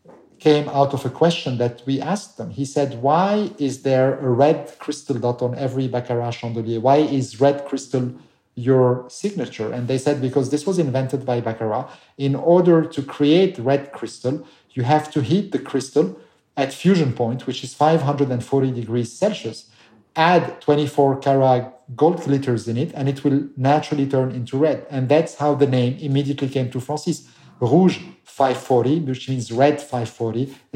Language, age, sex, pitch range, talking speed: English, 50-69, male, 125-150 Hz, 170 wpm